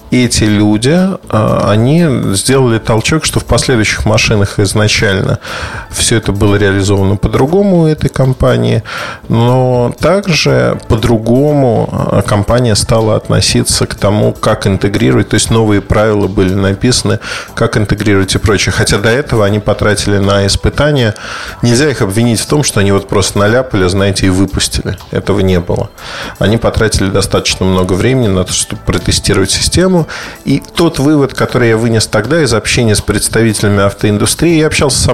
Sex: male